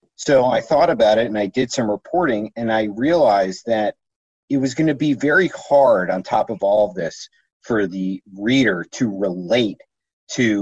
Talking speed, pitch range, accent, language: 185 wpm, 105-135 Hz, American, English